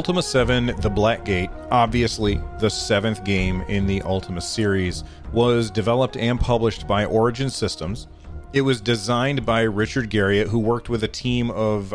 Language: English